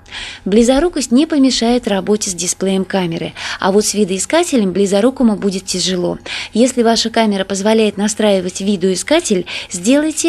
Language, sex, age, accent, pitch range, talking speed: Russian, female, 20-39, native, 200-260 Hz, 120 wpm